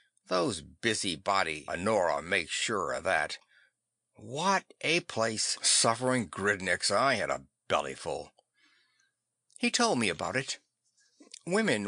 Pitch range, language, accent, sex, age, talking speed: 105-160 Hz, English, American, male, 60-79, 110 wpm